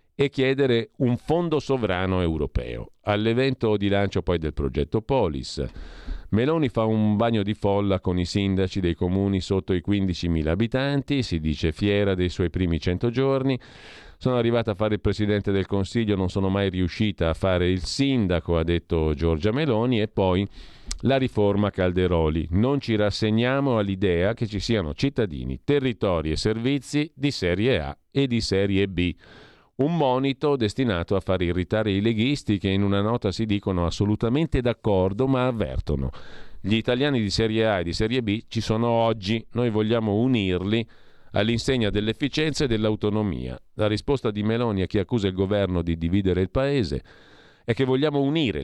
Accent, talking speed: native, 165 wpm